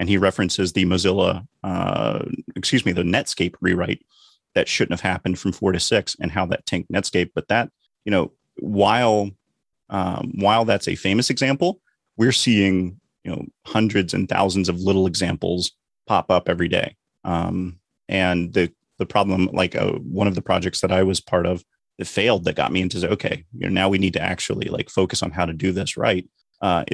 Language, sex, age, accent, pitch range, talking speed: English, male, 30-49, American, 90-105 Hz, 195 wpm